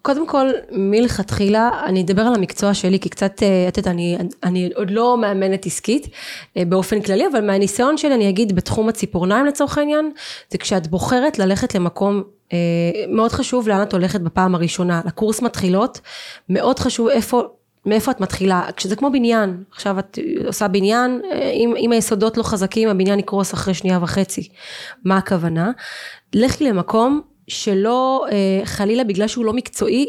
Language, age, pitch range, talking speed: Hebrew, 20-39, 190-240 Hz, 150 wpm